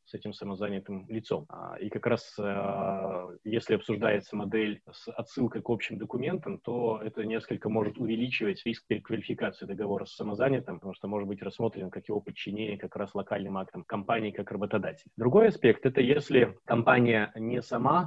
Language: Russian